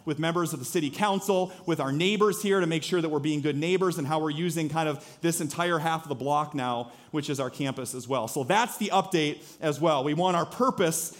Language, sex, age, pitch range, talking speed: English, male, 40-59, 150-190 Hz, 250 wpm